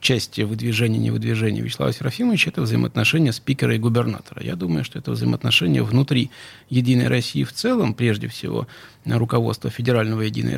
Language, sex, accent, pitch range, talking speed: Russian, male, native, 115-145 Hz, 140 wpm